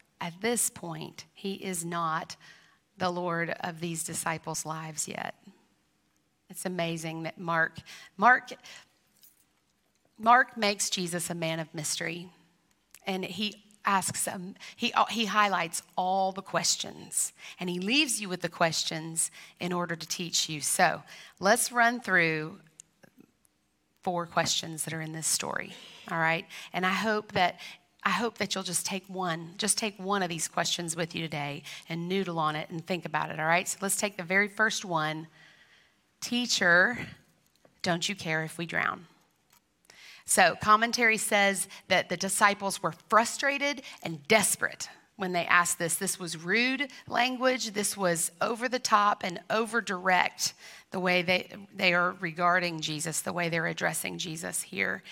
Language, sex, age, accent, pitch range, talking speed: English, female, 40-59, American, 165-205 Hz, 155 wpm